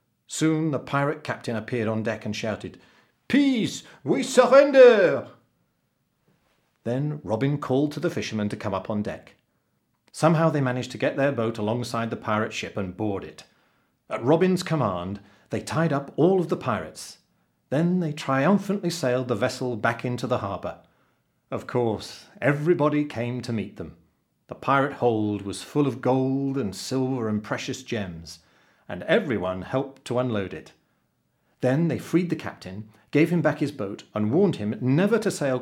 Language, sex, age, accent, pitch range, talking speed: English, male, 40-59, British, 105-150 Hz, 165 wpm